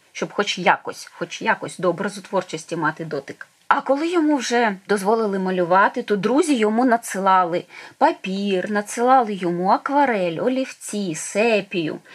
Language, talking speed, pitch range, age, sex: Ukrainian, 125 wpm, 205-265 Hz, 20-39, female